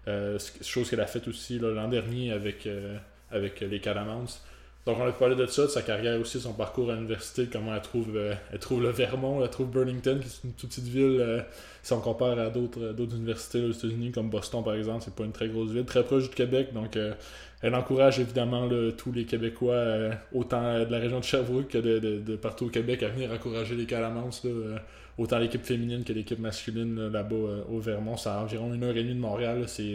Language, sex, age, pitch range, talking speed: French, male, 20-39, 110-125 Hz, 240 wpm